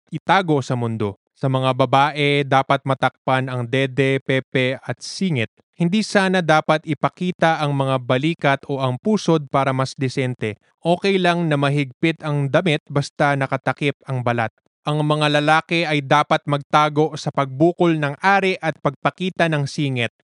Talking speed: 150 wpm